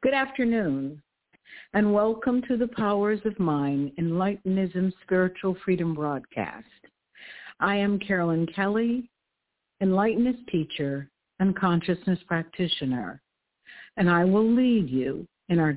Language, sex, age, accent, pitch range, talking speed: English, female, 60-79, American, 160-205 Hz, 110 wpm